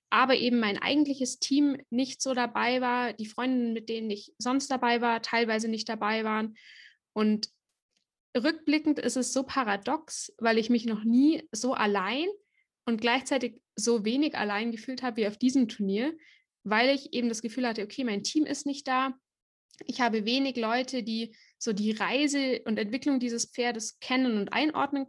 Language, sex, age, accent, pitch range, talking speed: English, female, 20-39, German, 225-275 Hz, 170 wpm